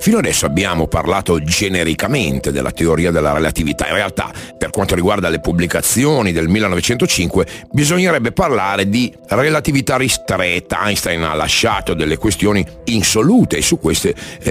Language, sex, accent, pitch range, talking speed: Italian, male, native, 90-130 Hz, 130 wpm